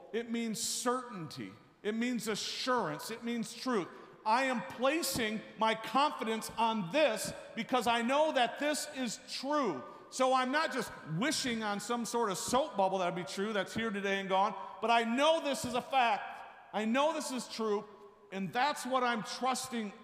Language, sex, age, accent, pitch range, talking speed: English, male, 50-69, American, 205-250 Hz, 175 wpm